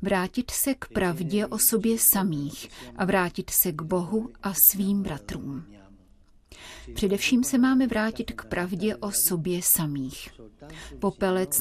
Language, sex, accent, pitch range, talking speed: Czech, female, native, 170-210 Hz, 130 wpm